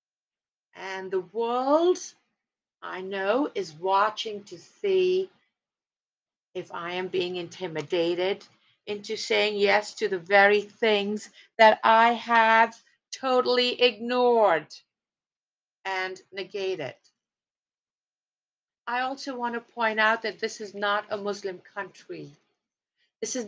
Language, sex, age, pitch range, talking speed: English, female, 50-69, 190-250 Hz, 110 wpm